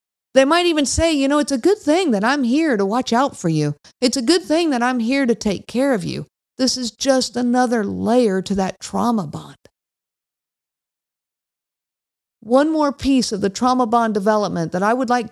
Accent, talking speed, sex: American, 200 wpm, female